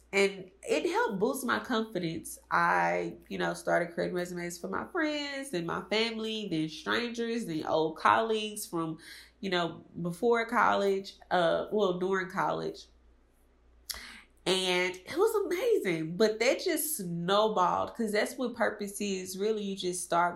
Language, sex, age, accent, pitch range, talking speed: English, female, 20-39, American, 170-210 Hz, 145 wpm